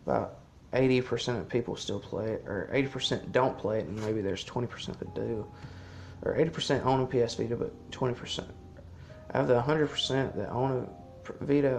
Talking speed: 205 wpm